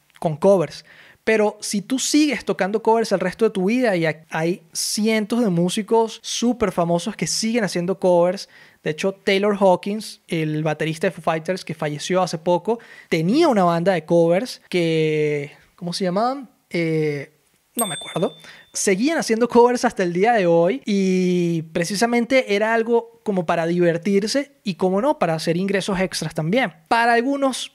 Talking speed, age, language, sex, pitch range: 160 wpm, 20-39, Spanish, male, 170-215 Hz